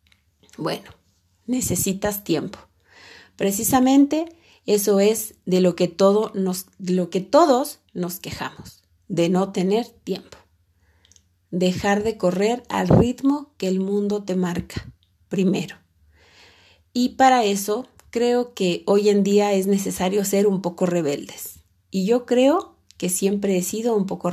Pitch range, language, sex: 135-210 Hz, Spanish, female